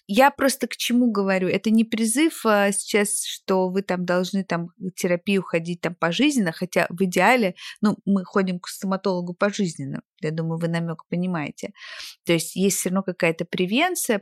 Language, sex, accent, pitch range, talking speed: Russian, female, native, 185-220 Hz, 170 wpm